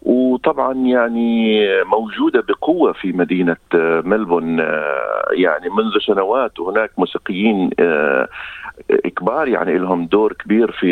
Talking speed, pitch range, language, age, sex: 100 wpm, 100-170 Hz, Arabic, 50-69, male